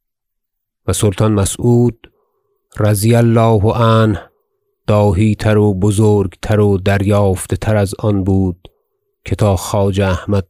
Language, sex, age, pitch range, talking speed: Persian, male, 30-49, 100-120 Hz, 120 wpm